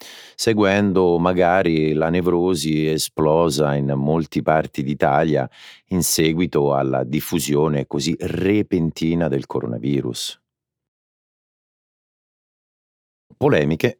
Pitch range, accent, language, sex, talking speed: 70-95 Hz, native, Italian, male, 75 wpm